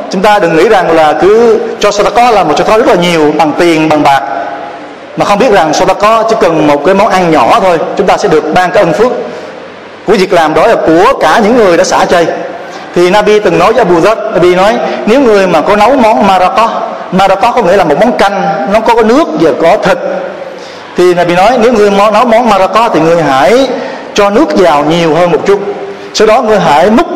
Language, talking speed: Vietnamese, 230 wpm